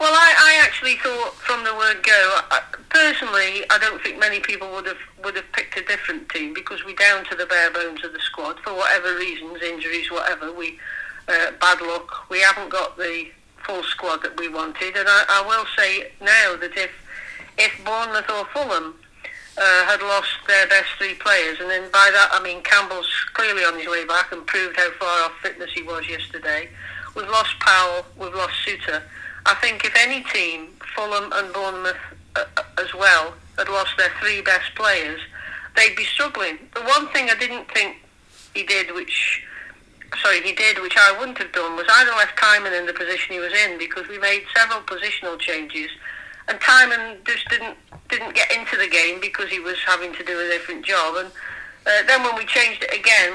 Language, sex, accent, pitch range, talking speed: English, female, British, 180-220 Hz, 200 wpm